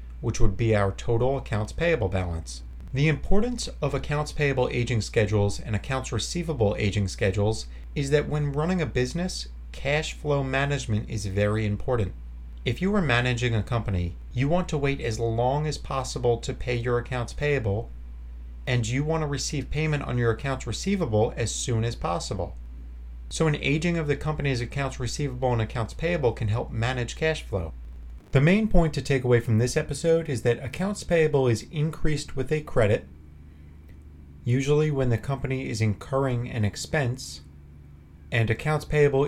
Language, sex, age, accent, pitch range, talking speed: English, male, 30-49, American, 100-145 Hz, 170 wpm